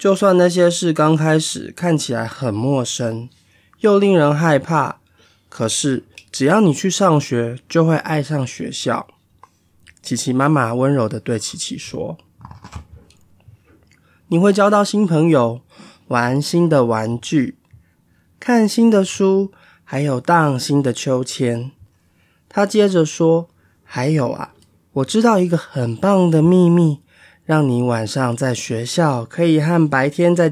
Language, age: Chinese, 20-39